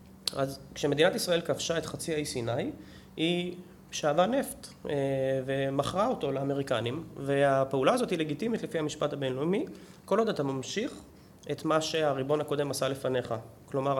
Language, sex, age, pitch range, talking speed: Hebrew, male, 20-39, 135-165 Hz, 135 wpm